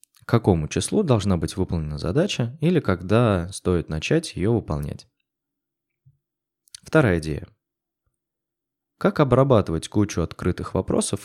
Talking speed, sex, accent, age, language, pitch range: 100 wpm, male, native, 20-39, Russian, 90-130 Hz